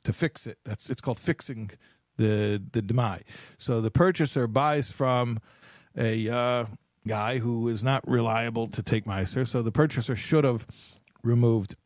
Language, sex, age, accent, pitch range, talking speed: English, male, 50-69, American, 115-180 Hz, 155 wpm